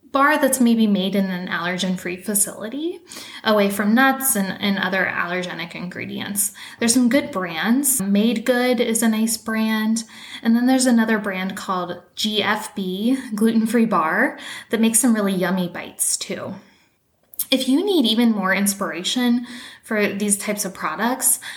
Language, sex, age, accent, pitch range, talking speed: English, female, 10-29, American, 185-240 Hz, 145 wpm